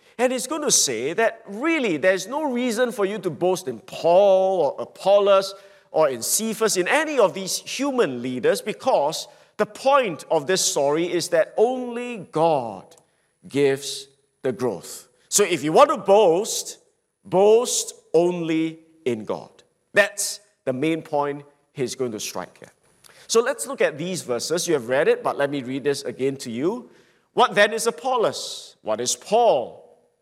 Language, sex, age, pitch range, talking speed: English, male, 50-69, 140-225 Hz, 170 wpm